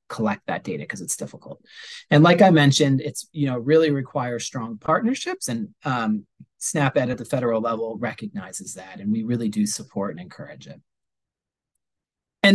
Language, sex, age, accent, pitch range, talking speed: English, male, 30-49, American, 130-165 Hz, 165 wpm